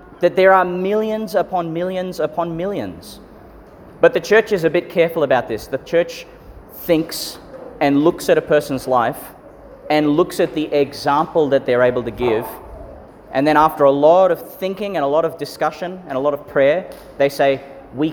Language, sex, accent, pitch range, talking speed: English, male, Australian, 125-165 Hz, 185 wpm